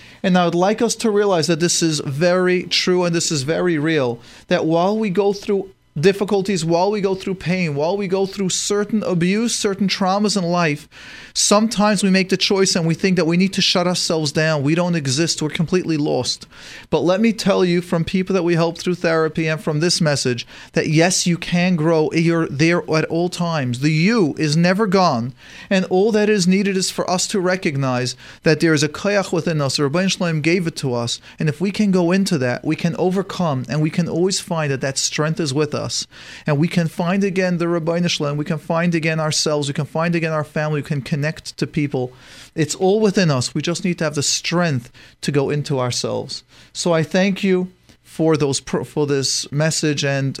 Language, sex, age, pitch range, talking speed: English, male, 40-59, 155-190 Hz, 215 wpm